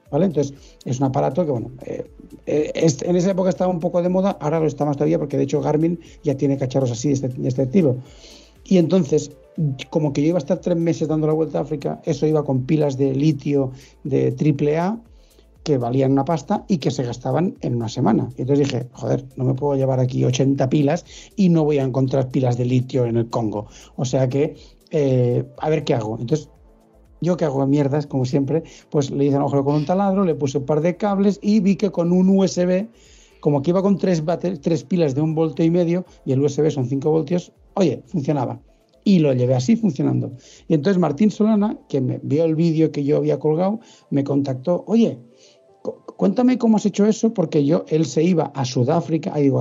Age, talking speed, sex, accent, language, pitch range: 60-79, 215 wpm, male, Spanish, Spanish, 140-180 Hz